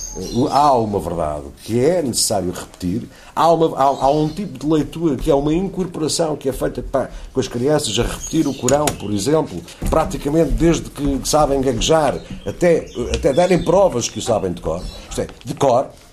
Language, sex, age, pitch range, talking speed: Portuguese, male, 50-69, 95-135 Hz, 190 wpm